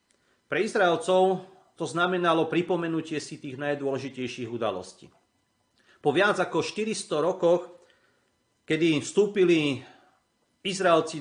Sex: male